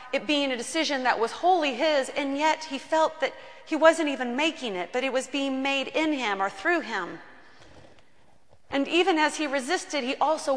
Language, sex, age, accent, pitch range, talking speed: English, female, 30-49, American, 190-250 Hz, 200 wpm